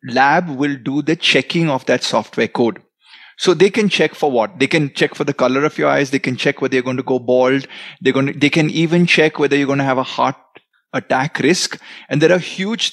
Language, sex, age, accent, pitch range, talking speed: Hindi, male, 30-49, native, 130-170 Hz, 250 wpm